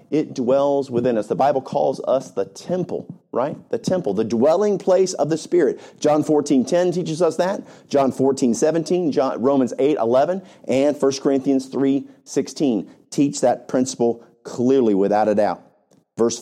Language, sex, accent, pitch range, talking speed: English, male, American, 135-195 Hz, 145 wpm